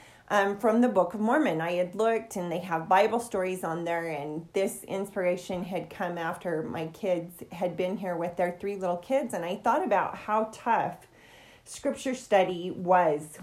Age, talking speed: 30-49, 185 wpm